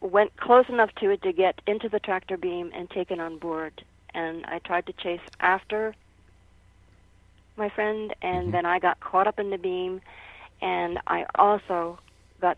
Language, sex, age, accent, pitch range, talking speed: English, female, 40-59, American, 160-205 Hz, 170 wpm